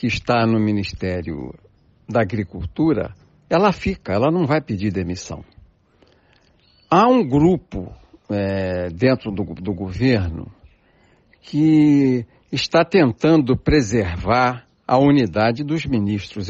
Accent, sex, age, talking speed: Brazilian, male, 60-79, 100 wpm